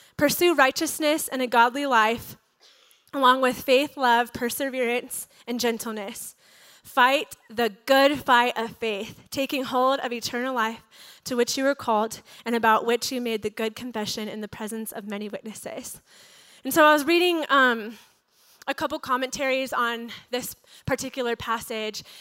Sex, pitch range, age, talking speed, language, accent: female, 230-280 Hz, 20-39, 150 wpm, English, American